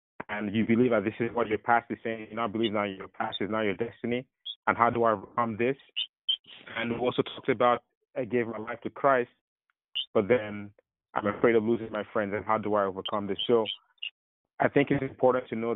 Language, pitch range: English, 105-120 Hz